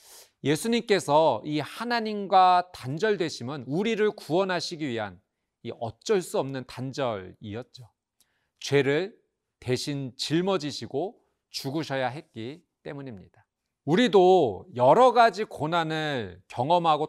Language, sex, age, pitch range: Korean, male, 40-59, 125-195 Hz